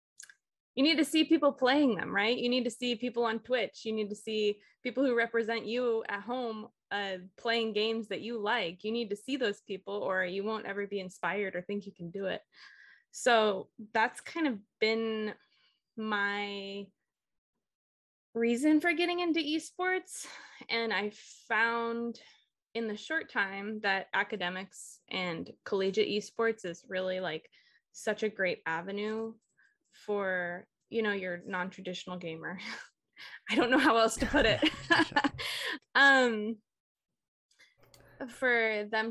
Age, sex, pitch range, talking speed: 20-39, female, 190-230 Hz, 145 wpm